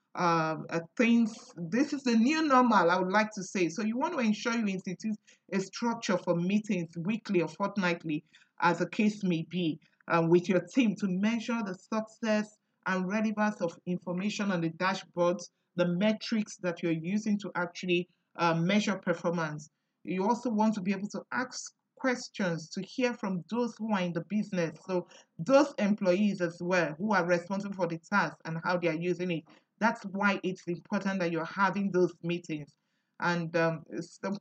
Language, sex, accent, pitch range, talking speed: English, male, Nigerian, 175-220 Hz, 180 wpm